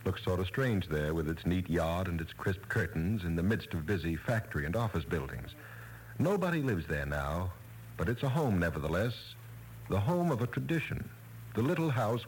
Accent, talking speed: American, 190 wpm